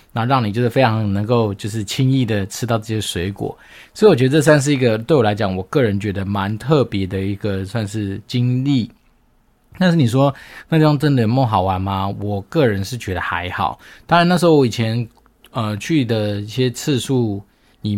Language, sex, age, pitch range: Chinese, male, 20-39, 100-135 Hz